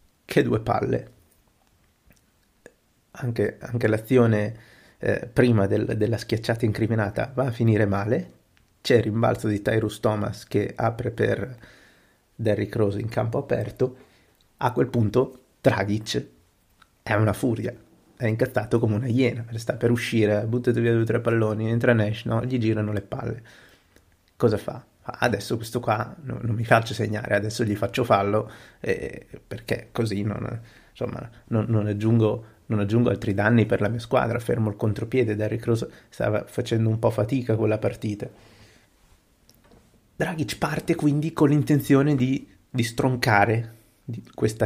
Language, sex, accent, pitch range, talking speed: Italian, male, native, 110-125 Hz, 150 wpm